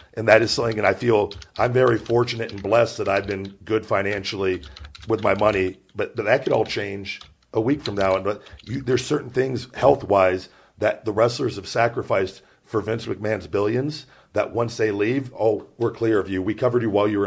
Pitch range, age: 100-125 Hz, 50-69